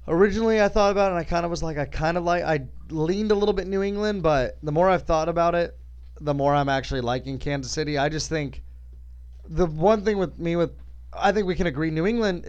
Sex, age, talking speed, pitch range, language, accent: male, 20-39, 250 wpm, 135-175 Hz, English, American